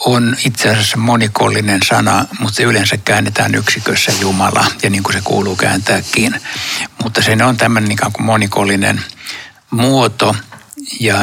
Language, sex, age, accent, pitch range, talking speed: Finnish, male, 60-79, native, 100-120 Hz, 130 wpm